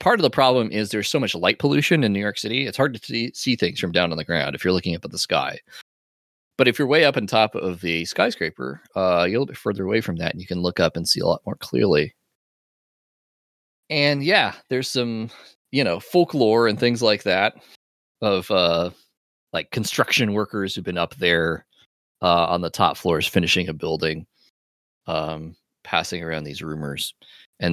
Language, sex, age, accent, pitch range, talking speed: English, male, 20-39, American, 85-125 Hz, 210 wpm